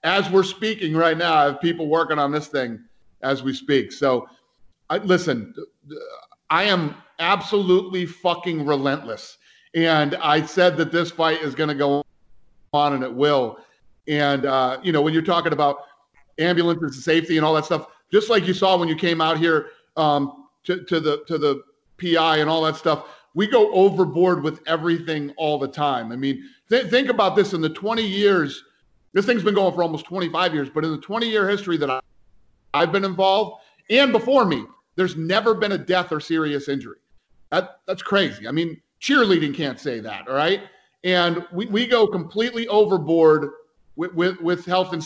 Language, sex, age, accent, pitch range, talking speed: English, male, 50-69, American, 150-190 Hz, 180 wpm